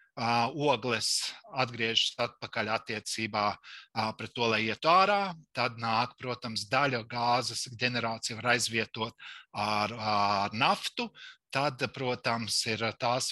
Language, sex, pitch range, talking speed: English, male, 115-150 Hz, 110 wpm